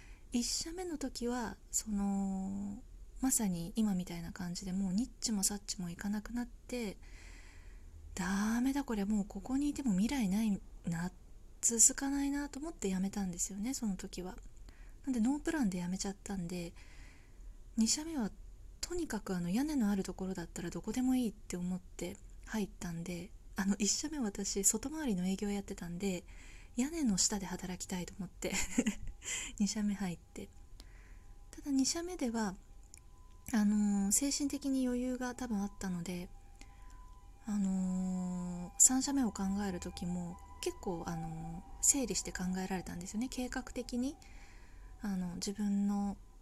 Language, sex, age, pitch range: Japanese, female, 20-39, 180-240 Hz